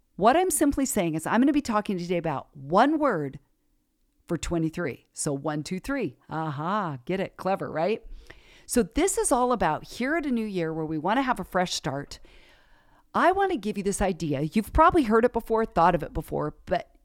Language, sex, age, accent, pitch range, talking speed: English, female, 50-69, American, 175-255 Hz, 215 wpm